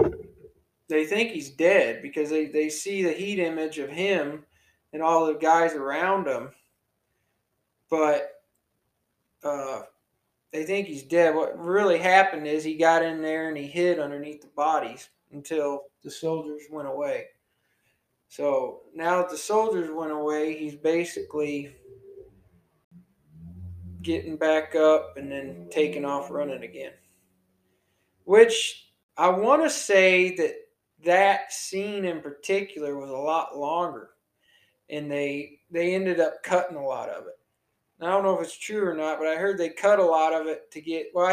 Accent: American